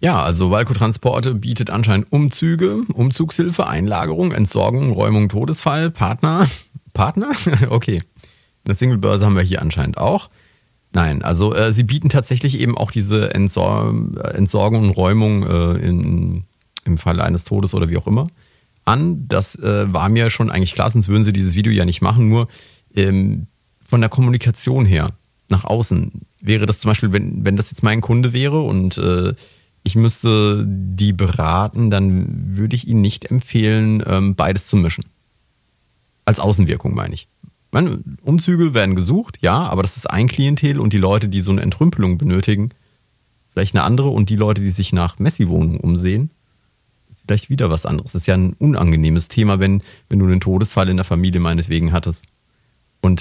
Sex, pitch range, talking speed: male, 95-120 Hz, 165 wpm